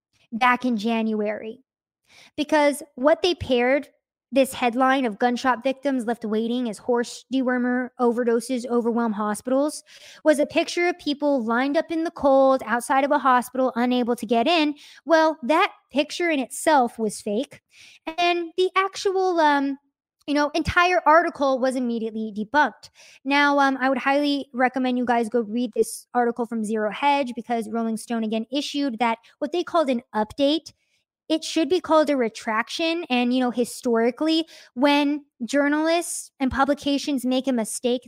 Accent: American